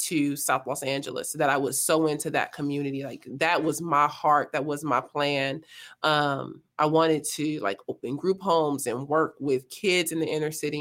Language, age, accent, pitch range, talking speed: English, 30-49, American, 145-175 Hz, 200 wpm